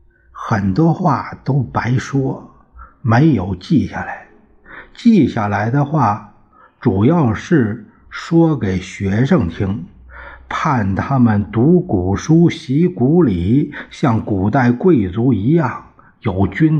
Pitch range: 105-155 Hz